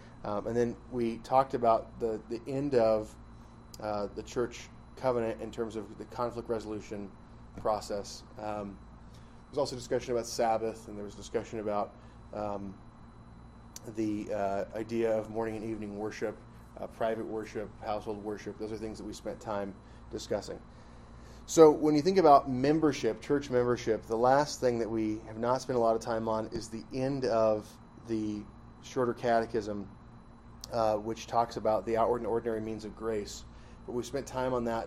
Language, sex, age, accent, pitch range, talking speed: English, male, 20-39, American, 110-120 Hz, 170 wpm